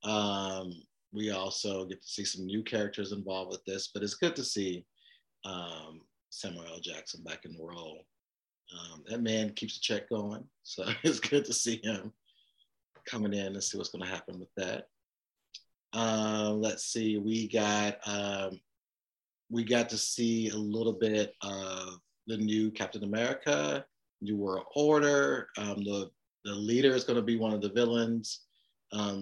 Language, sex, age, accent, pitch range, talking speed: English, male, 30-49, American, 100-115 Hz, 165 wpm